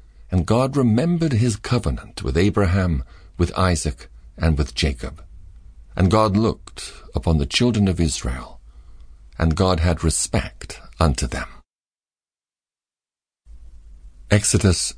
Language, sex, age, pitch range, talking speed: English, male, 50-69, 65-95 Hz, 110 wpm